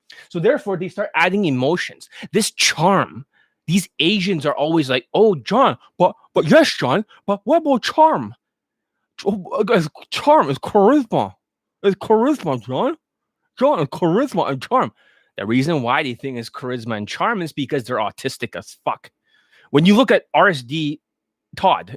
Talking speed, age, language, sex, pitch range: 155 wpm, 20-39, English, male, 120-195 Hz